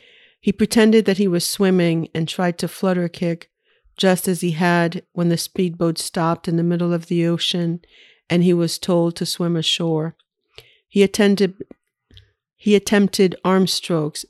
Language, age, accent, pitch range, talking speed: English, 50-69, American, 170-190 Hz, 160 wpm